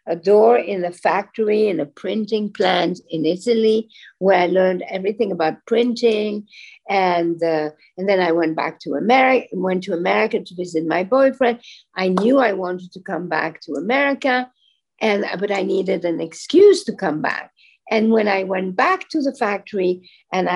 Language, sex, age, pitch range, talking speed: English, female, 60-79, 185-250 Hz, 175 wpm